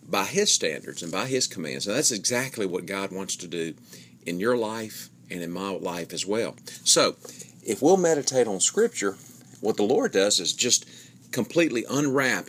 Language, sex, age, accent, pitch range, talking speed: English, male, 40-59, American, 85-120 Hz, 185 wpm